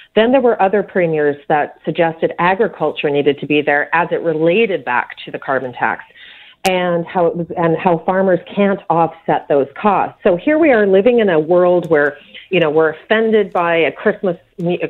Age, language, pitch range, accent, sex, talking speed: 40-59, English, 160-200 Hz, American, female, 190 wpm